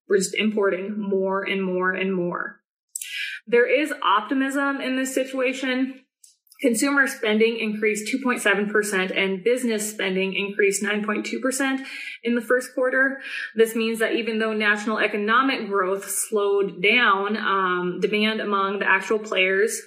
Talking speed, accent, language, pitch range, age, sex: 130 wpm, American, English, 195-235 Hz, 20-39, female